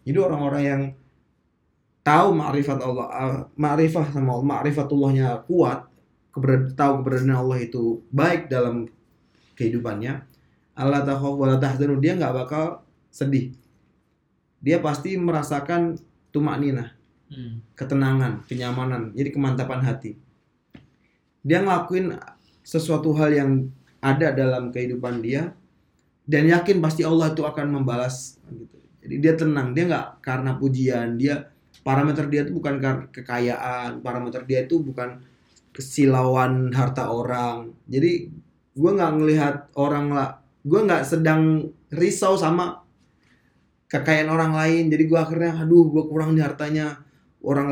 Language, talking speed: Indonesian, 120 wpm